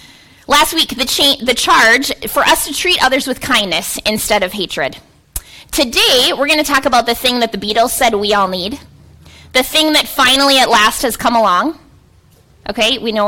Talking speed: 190 wpm